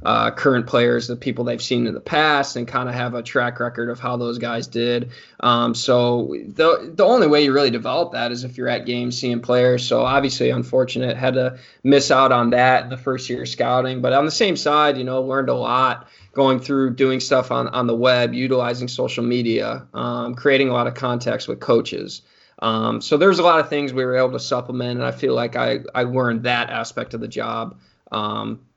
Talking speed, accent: 225 wpm, American